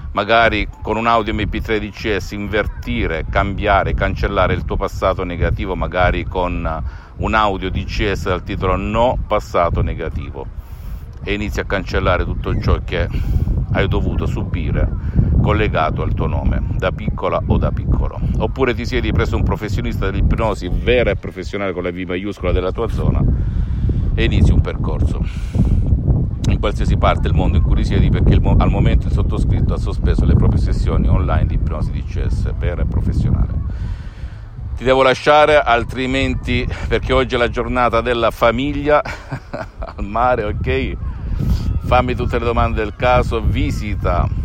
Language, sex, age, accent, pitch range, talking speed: Italian, male, 50-69, native, 90-115 Hz, 145 wpm